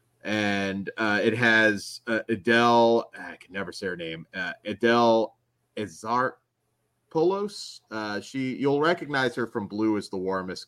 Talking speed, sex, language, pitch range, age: 140 wpm, male, English, 95-120 Hz, 30-49